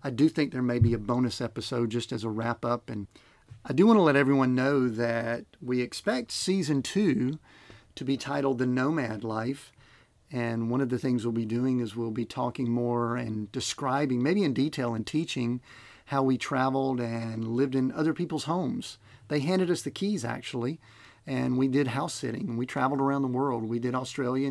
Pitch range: 120-140 Hz